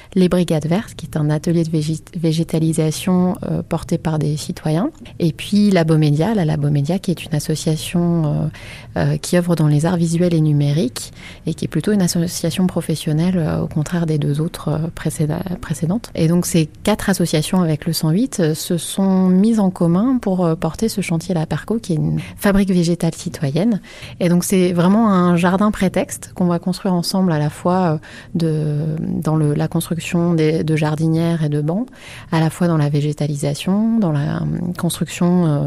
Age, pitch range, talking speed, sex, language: 30-49, 155-180 Hz, 190 wpm, female, French